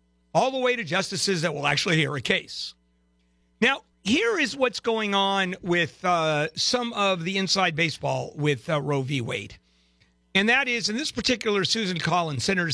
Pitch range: 130-185 Hz